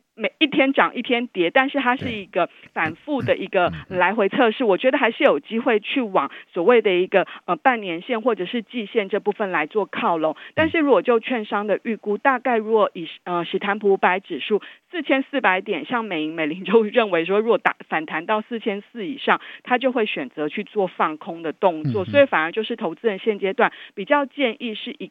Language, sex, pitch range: Chinese, female, 175-240 Hz